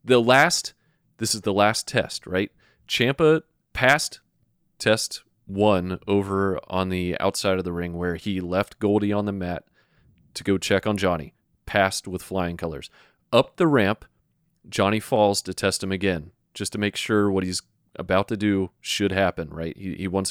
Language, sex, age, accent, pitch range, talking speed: English, male, 30-49, American, 95-115 Hz, 175 wpm